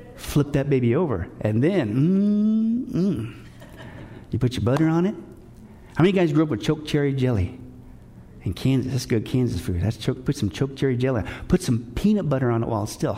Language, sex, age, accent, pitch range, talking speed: English, male, 50-69, American, 115-165 Hz, 195 wpm